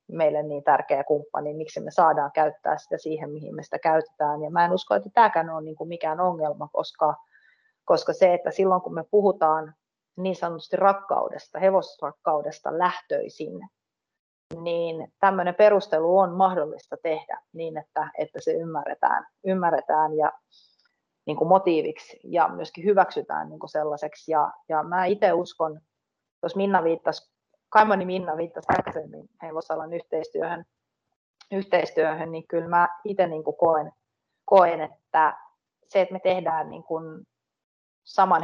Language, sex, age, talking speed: Finnish, female, 30-49, 125 wpm